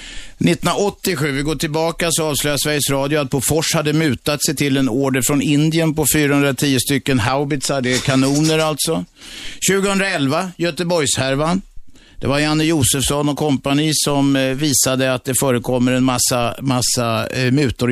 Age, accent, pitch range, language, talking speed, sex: 50-69, native, 135-155 Hz, Swedish, 145 wpm, male